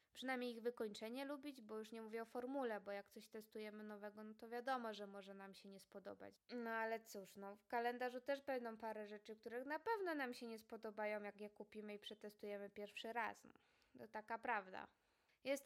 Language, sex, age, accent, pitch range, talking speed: Polish, female, 20-39, native, 205-235 Hz, 205 wpm